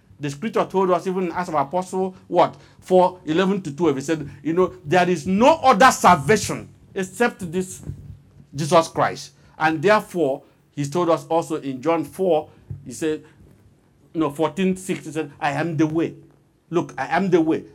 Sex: male